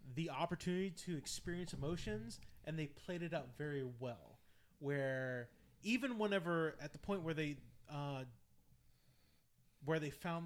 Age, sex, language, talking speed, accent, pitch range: 20-39, male, English, 140 wpm, American, 140-195 Hz